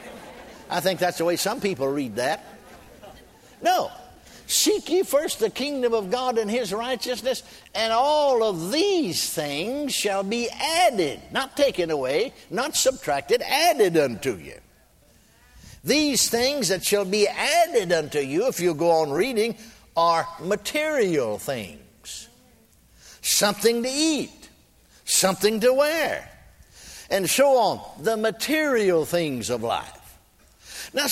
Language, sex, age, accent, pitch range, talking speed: English, male, 60-79, American, 185-260 Hz, 130 wpm